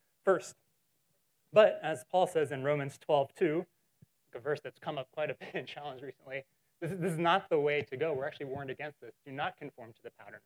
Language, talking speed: English, 225 wpm